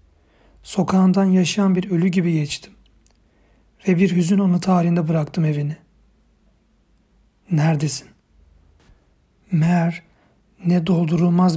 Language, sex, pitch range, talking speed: Turkish, male, 150-180 Hz, 90 wpm